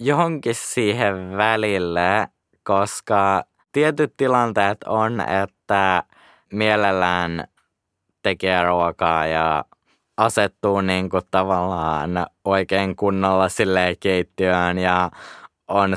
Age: 20-39